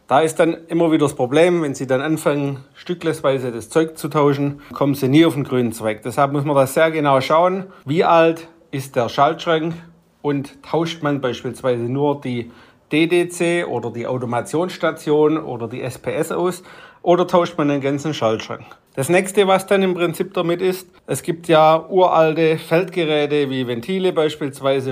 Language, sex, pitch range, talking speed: German, male, 130-160 Hz, 170 wpm